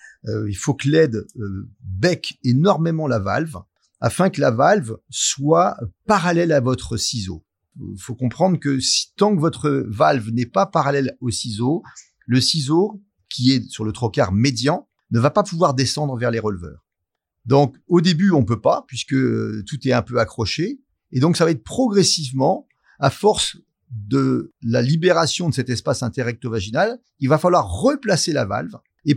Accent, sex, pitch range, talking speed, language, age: French, male, 125-175 Hz, 175 wpm, French, 40-59